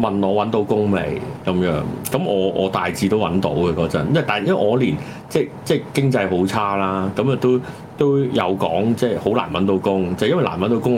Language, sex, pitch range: Chinese, male, 95-125 Hz